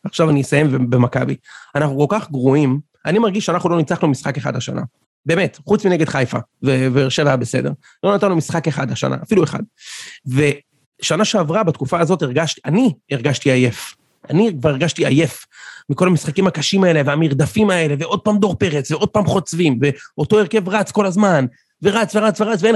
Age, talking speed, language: 30-49, 170 wpm, Hebrew